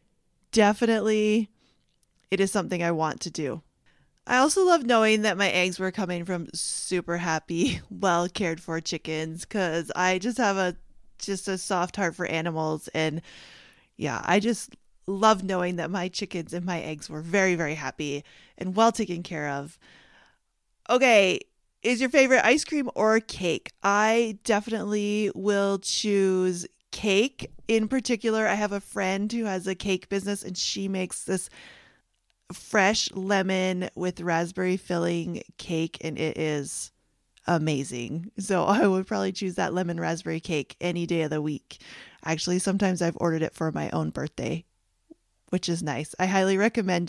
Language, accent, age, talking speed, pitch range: English, American, 30-49, 155 wpm, 170-210 Hz